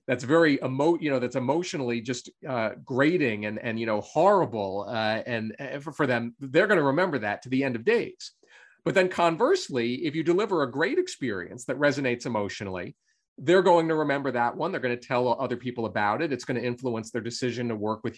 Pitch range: 125-170 Hz